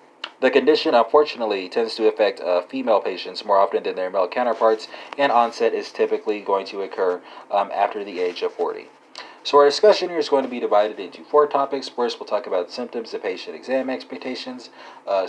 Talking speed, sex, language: 195 wpm, male, English